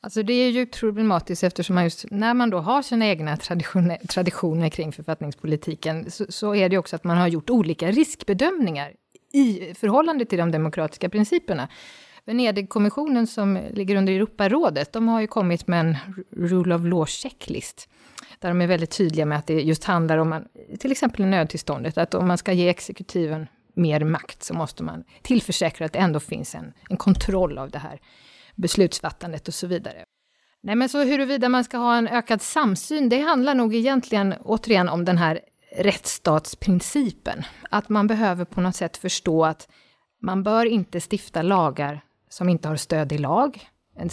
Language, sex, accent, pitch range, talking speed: English, female, Swedish, 170-230 Hz, 180 wpm